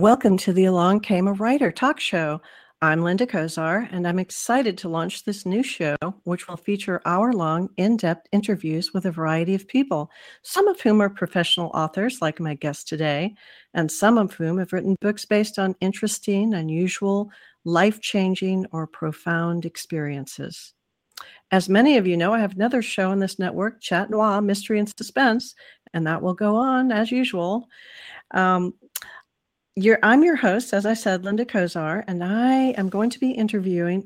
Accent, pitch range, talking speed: American, 175-225 Hz, 165 wpm